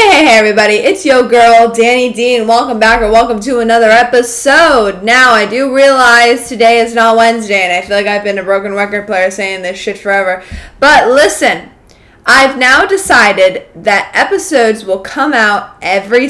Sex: female